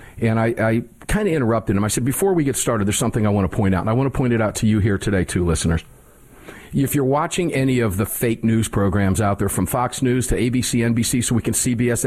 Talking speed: 265 wpm